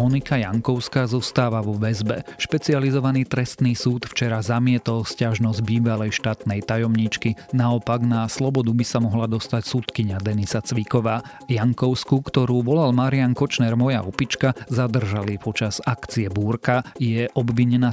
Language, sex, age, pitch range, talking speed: Slovak, male, 40-59, 110-125 Hz, 125 wpm